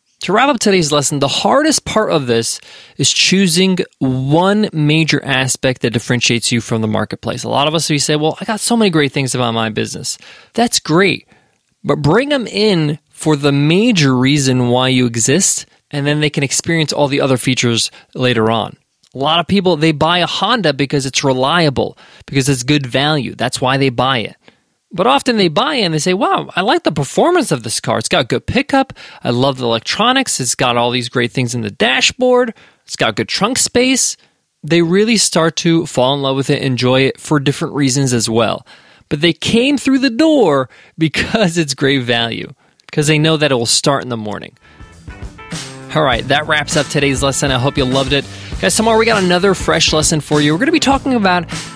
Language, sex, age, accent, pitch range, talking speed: English, male, 20-39, American, 130-180 Hz, 210 wpm